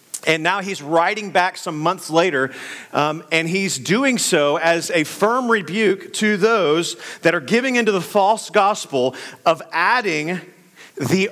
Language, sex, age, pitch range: English, male, 40-59, 145-225 Hz